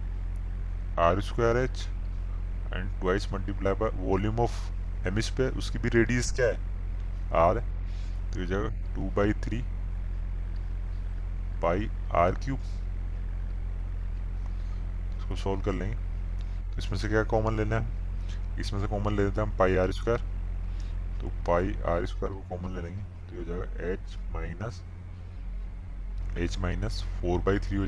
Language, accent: Hindi, native